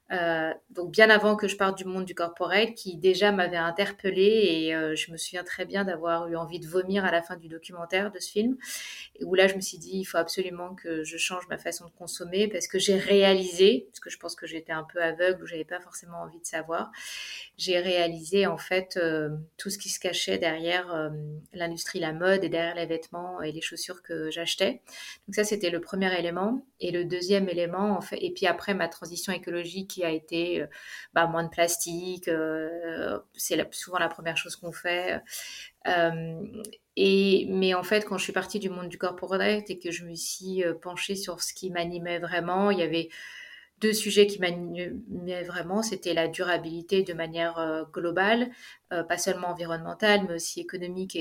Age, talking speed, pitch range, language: 30-49, 205 wpm, 170-195 Hz, French